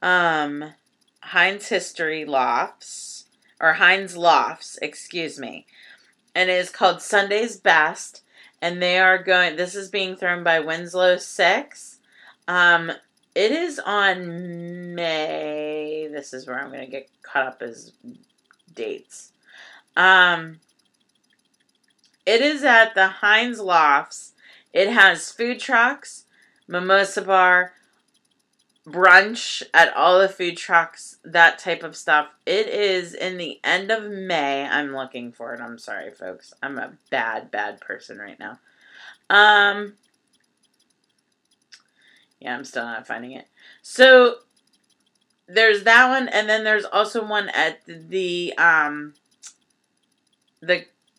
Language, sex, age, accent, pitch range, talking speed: English, female, 30-49, American, 165-215 Hz, 125 wpm